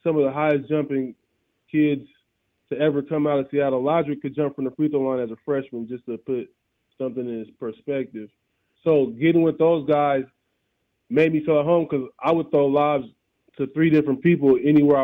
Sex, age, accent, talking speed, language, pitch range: male, 20-39, American, 200 wpm, English, 130-150 Hz